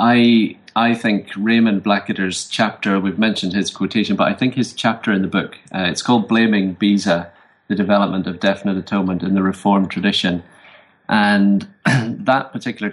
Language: English